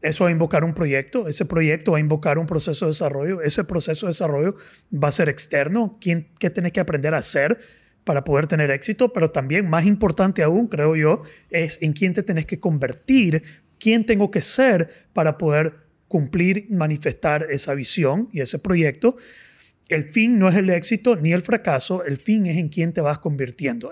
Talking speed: 195 wpm